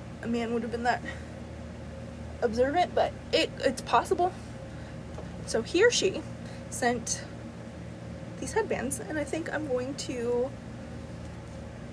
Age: 20-39